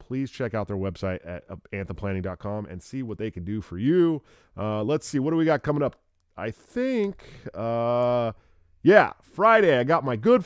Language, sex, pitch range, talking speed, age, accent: English, male, 100-135 Hz, 190 wpm, 30-49, American